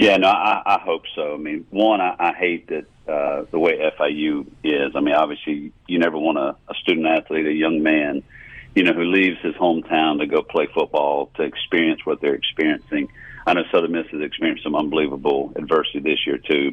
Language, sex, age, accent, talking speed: English, male, 50-69, American, 210 wpm